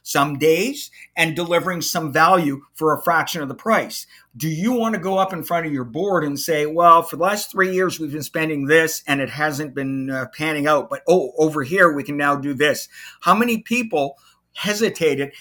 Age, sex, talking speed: 50-69, male, 215 wpm